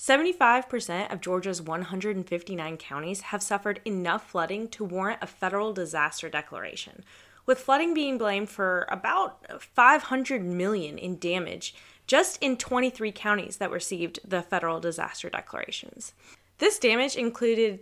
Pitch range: 185-255 Hz